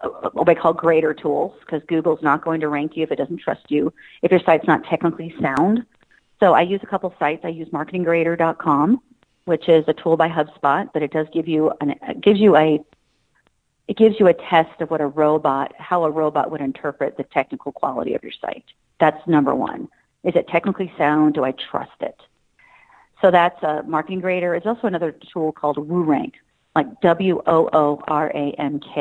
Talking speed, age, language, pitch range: 190 wpm, 40-59, English, 150-175 Hz